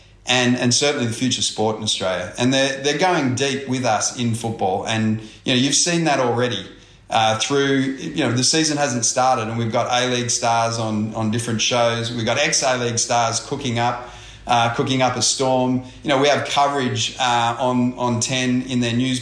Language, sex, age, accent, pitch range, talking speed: English, male, 30-49, Australian, 110-125 Hz, 210 wpm